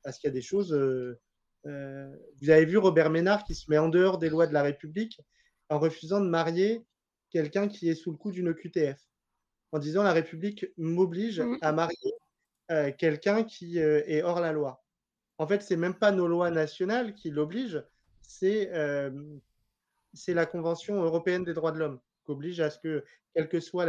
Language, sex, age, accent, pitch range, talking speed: French, male, 30-49, French, 150-185 Hz, 190 wpm